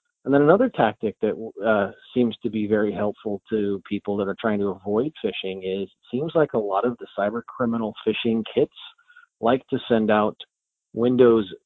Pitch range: 105-125 Hz